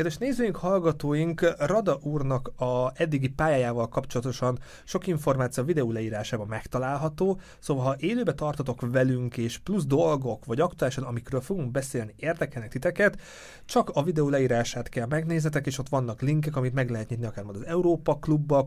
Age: 30-49